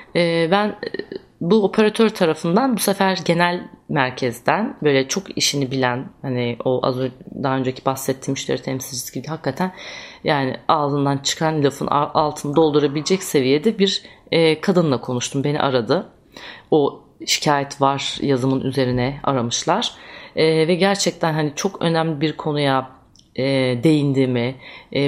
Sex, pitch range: female, 135-180 Hz